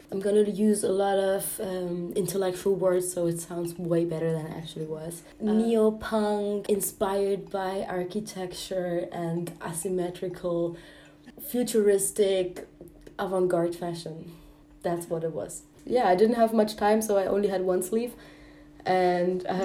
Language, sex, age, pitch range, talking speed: English, female, 20-39, 180-215 Hz, 140 wpm